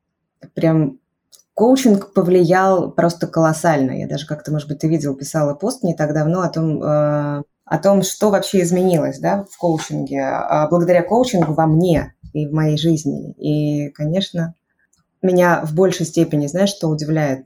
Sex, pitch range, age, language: female, 150-175 Hz, 20-39, Russian